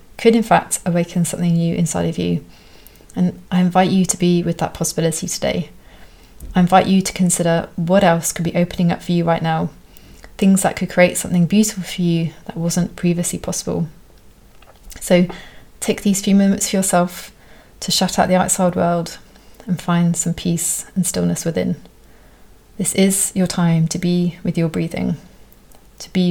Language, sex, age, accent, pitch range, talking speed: English, female, 30-49, British, 170-190 Hz, 175 wpm